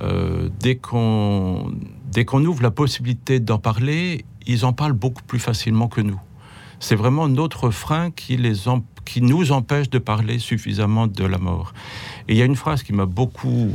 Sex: male